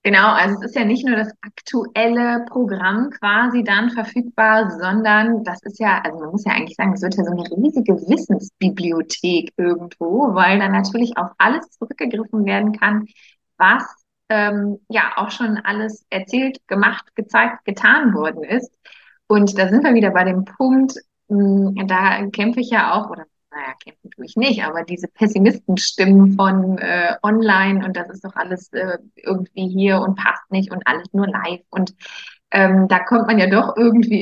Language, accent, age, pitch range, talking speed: German, German, 20-39, 190-230 Hz, 175 wpm